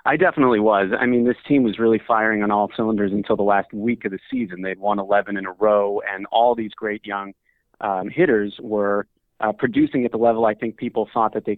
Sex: male